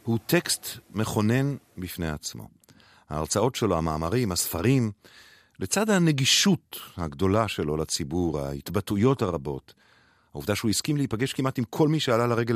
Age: 50-69